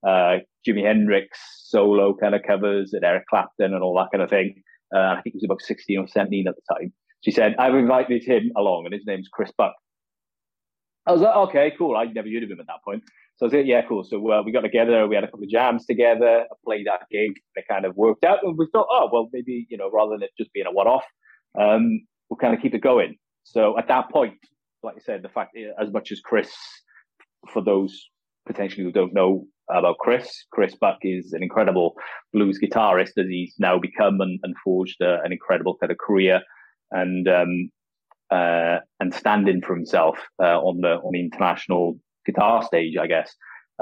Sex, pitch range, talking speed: male, 95-115 Hz, 220 wpm